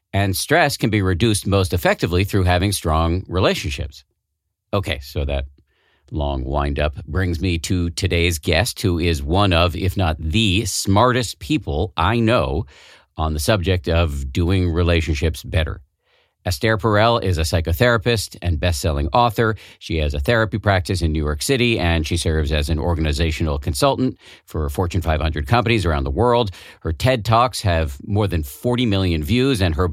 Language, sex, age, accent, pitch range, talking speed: English, male, 50-69, American, 85-110 Hz, 160 wpm